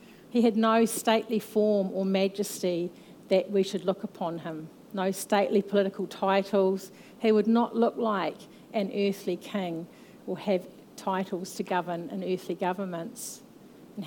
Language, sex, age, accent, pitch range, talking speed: English, female, 50-69, Australian, 185-215 Hz, 145 wpm